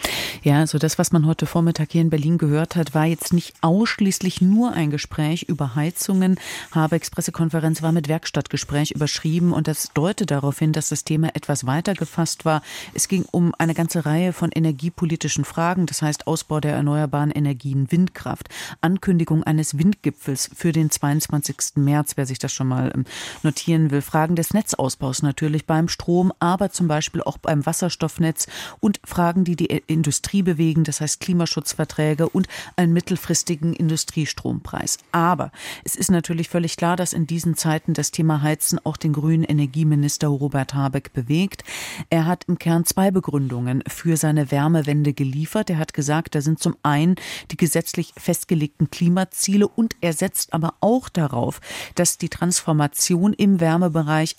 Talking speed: 160 wpm